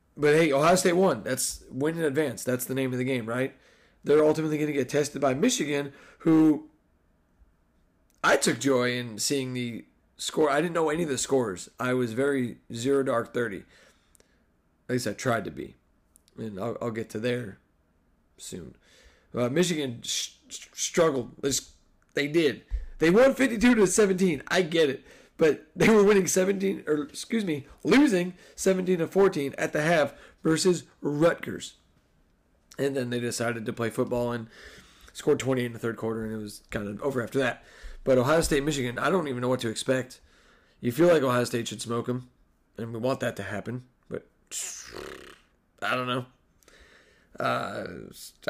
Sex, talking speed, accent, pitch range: male, 175 wpm, American, 120-155 Hz